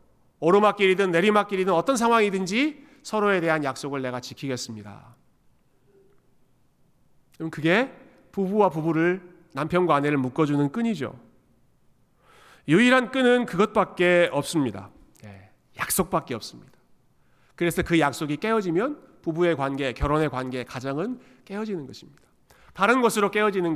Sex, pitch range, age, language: male, 135-195 Hz, 40-59, Korean